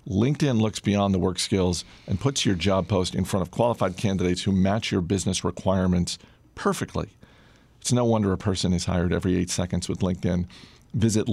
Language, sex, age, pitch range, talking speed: English, male, 40-59, 90-110 Hz, 185 wpm